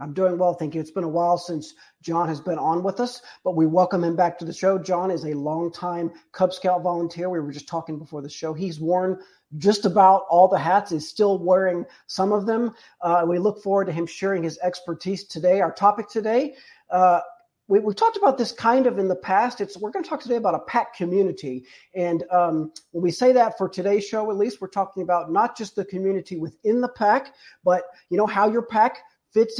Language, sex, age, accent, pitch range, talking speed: English, male, 50-69, American, 175-215 Hz, 225 wpm